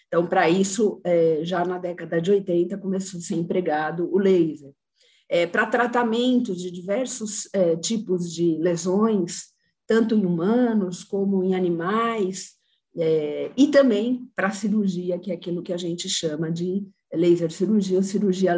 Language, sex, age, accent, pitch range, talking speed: Portuguese, female, 50-69, Brazilian, 175-225 Hz, 140 wpm